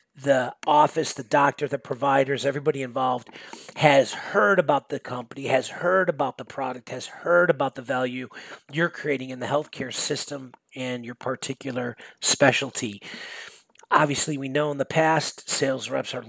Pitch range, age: 120-140 Hz, 40-59